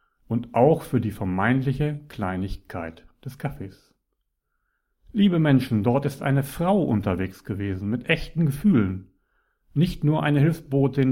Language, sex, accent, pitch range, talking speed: German, male, German, 105-140 Hz, 125 wpm